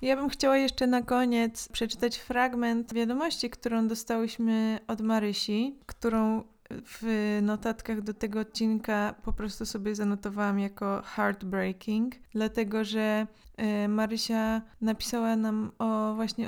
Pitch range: 210-230 Hz